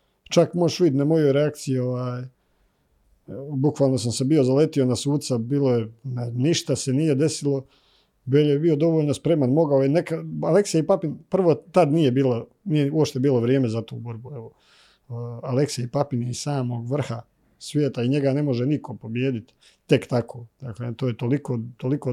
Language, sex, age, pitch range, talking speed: Croatian, male, 40-59, 130-155 Hz, 175 wpm